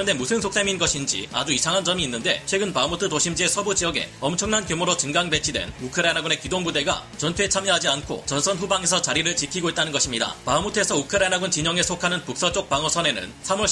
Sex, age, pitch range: male, 30-49, 145-185 Hz